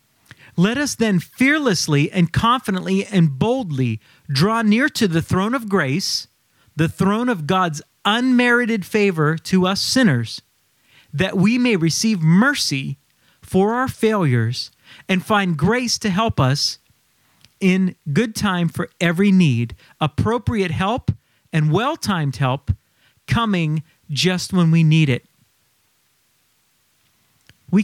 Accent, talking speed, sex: American, 120 wpm, male